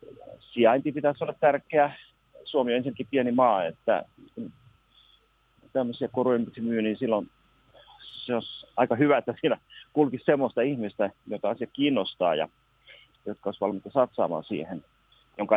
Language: Finnish